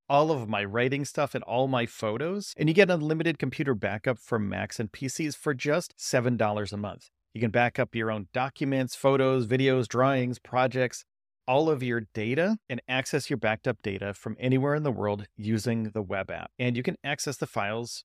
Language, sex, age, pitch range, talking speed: English, male, 40-59, 120-155 Hz, 205 wpm